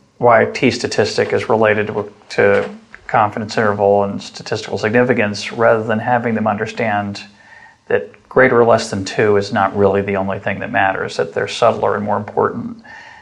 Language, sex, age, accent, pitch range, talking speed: English, male, 40-59, American, 105-170 Hz, 165 wpm